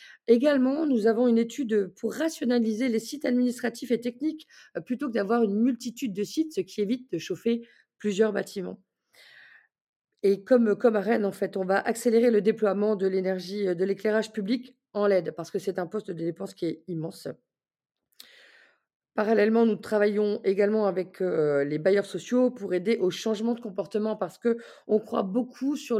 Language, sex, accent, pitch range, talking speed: French, female, French, 195-240 Hz, 170 wpm